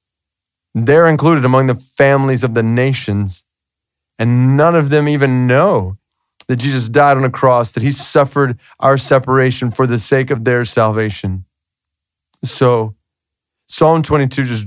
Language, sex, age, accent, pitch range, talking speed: English, male, 30-49, American, 110-140 Hz, 145 wpm